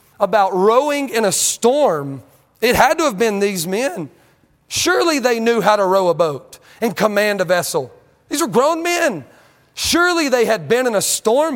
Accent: American